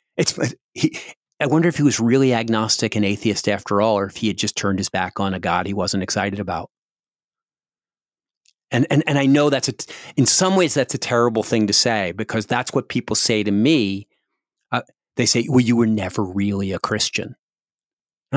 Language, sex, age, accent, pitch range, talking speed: English, male, 40-59, American, 105-145 Hz, 205 wpm